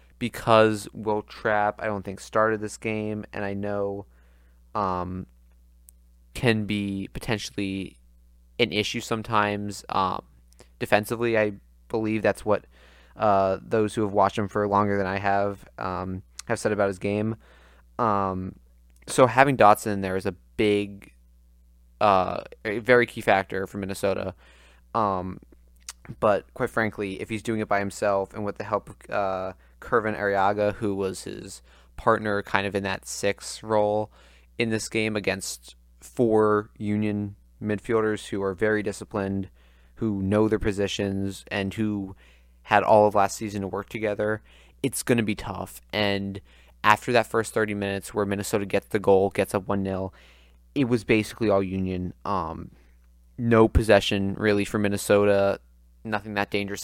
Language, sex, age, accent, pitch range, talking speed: English, male, 20-39, American, 70-105 Hz, 150 wpm